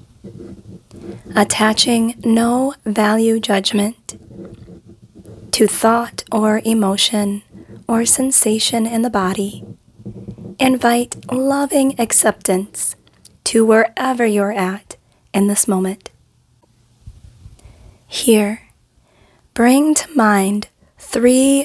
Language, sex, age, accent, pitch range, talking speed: English, female, 20-39, American, 200-235 Hz, 80 wpm